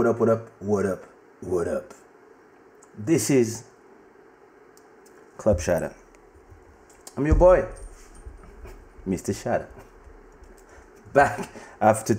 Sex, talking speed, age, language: male, 95 wpm, 30-49, English